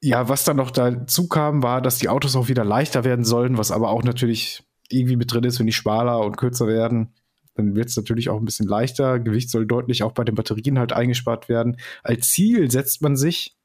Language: German